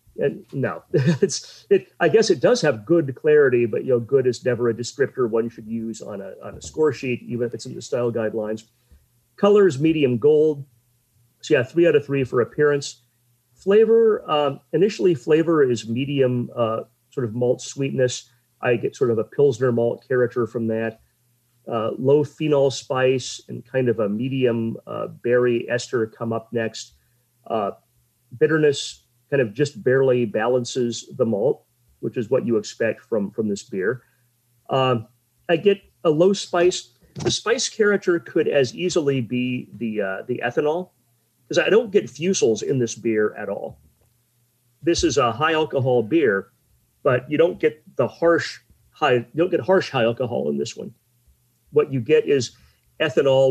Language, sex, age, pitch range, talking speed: English, male, 40-59, 120-150 Hz, 175 wpm